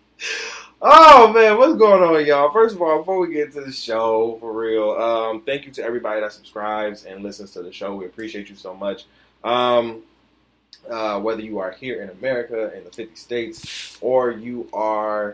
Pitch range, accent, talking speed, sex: 100-125 Hz, American, 190 wpm, male